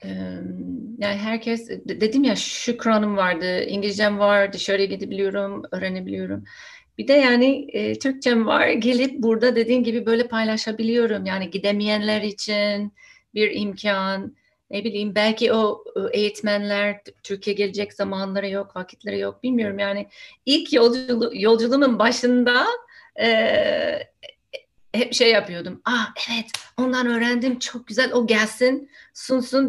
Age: 40-59